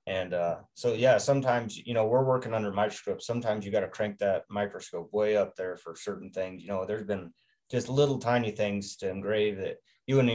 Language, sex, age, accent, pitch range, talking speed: English, male, 20-39, American, 100-125 Hz, 215 wpm